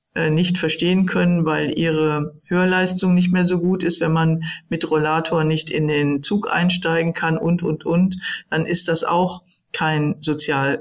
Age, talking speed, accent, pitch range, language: 50-69, 165 wpm, German, 150-170 Hz, German